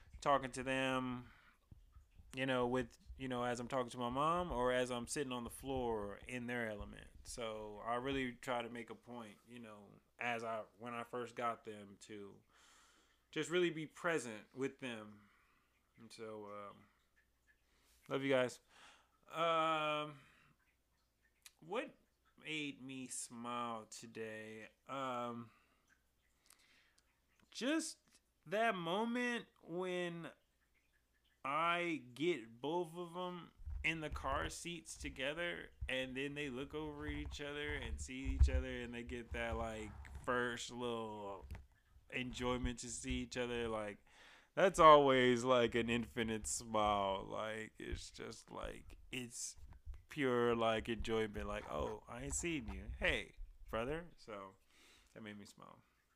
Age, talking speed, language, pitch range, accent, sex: 20-39, 135 wpm, English, 105-135 Hz, American, male